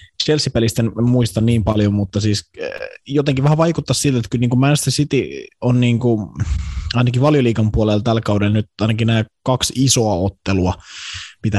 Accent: native